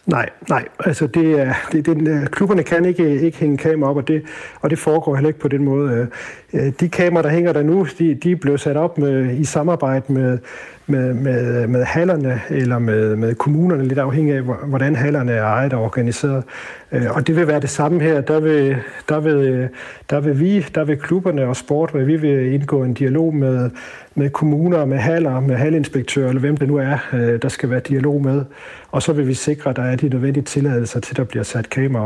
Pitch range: 125-150 Hz